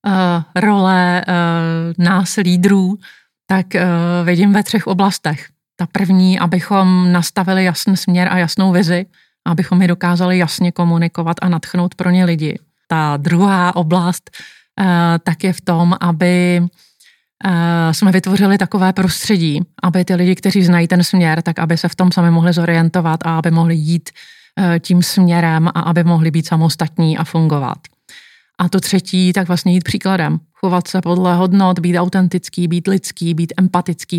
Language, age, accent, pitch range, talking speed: Czech, 30-49, native, 170-190 Hz, 145 wpm